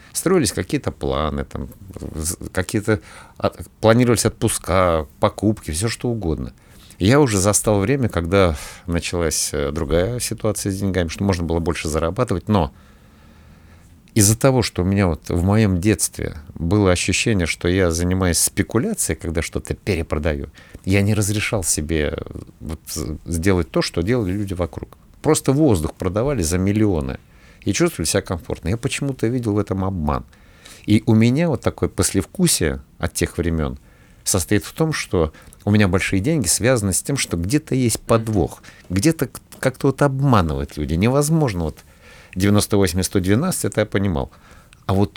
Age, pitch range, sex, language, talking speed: 50-69, 85-110 Hz, male, Russian, 140 wpm